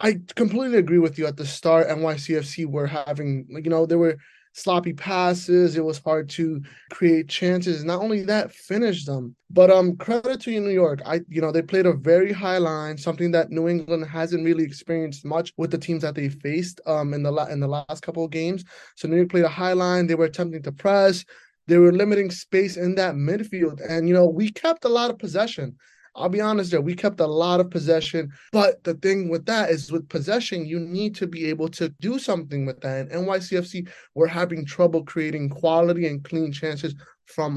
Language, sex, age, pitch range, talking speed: English, male, 20-39, 155-180 Hz, 215 wpm